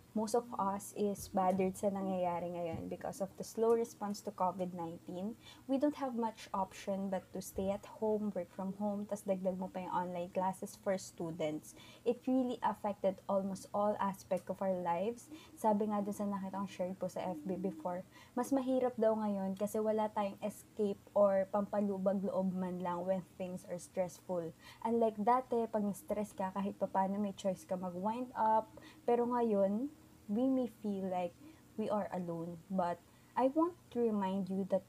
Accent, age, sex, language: Filipino, 20-39, female, English